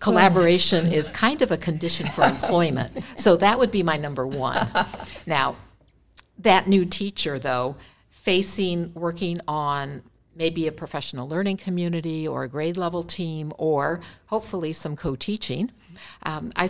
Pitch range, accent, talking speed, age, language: 145-175 Hz, American, 135 wpm, 60-79, English